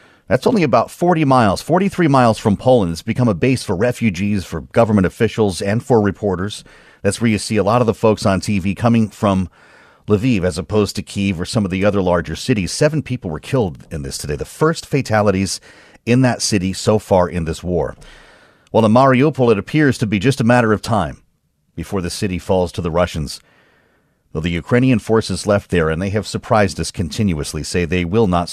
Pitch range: 95-135 Hz